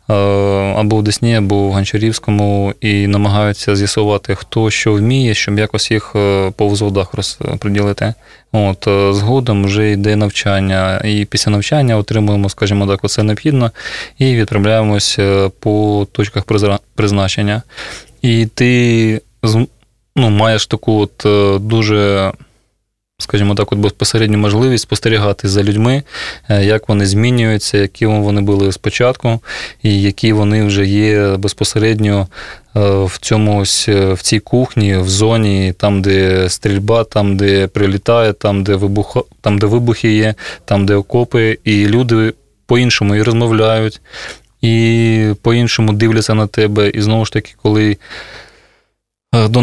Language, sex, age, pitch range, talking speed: Russian, male, 20-39, 100-110 Hz, 125 wpm